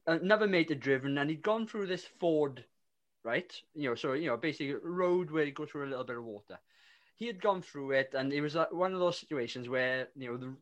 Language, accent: English, British